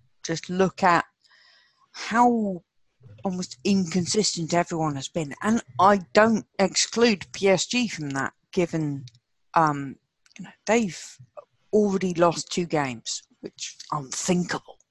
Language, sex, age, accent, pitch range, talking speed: English, female, 40-59, British, 140-205 Hz, 110 wpm